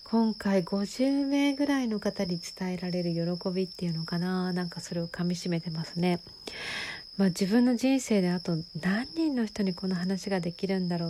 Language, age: Japanese, 40-59